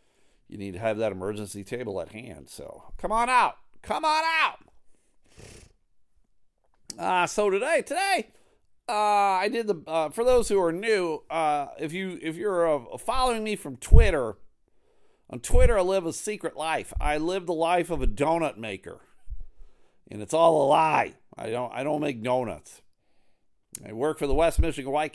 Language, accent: English, American